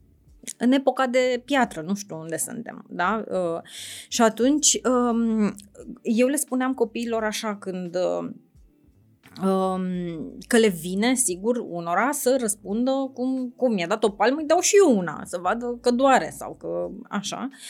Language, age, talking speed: Romanian, 20-39, 140 wpm